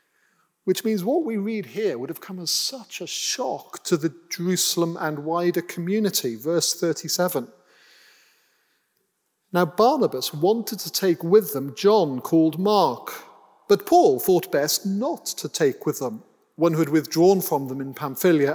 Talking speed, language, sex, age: 155 wpm, English, male, 40-59